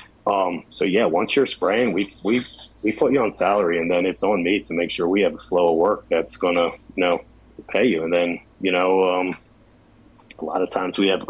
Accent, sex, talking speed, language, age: American, male, 235 wpm, English, 30-49